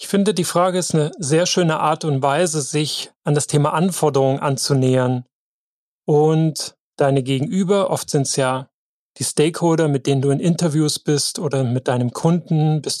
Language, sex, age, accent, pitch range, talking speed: German, male, 30-49, German, 145-170 Hz, 170 wpm